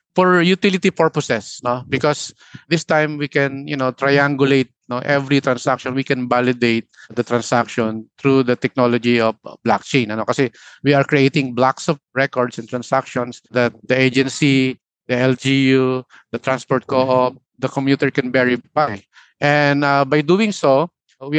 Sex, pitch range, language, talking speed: male, 130-150 Hz, Filipino, 155 wpm